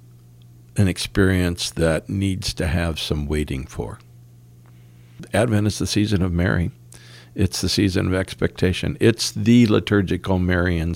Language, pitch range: English, 80-100 Hz